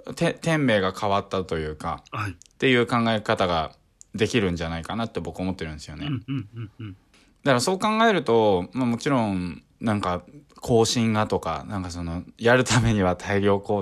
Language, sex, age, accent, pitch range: Japanese, male, 20-39, native, 90-135 Hz